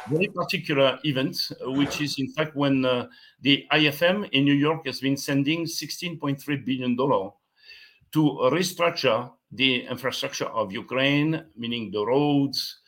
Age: 60-79